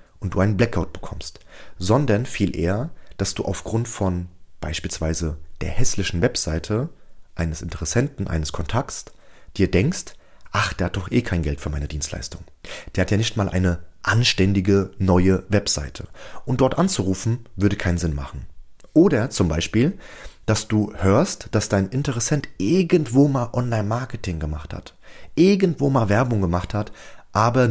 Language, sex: German, male